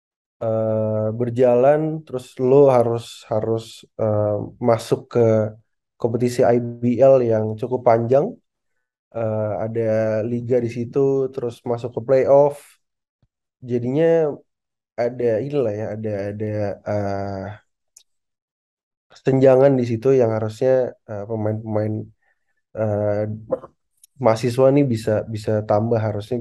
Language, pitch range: Indonesian, 110-125 Hz